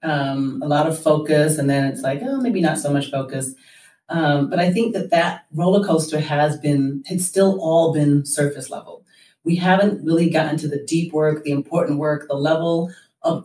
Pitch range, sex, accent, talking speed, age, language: 150-190 Hz, female, American, 195 wpm, 30-49, English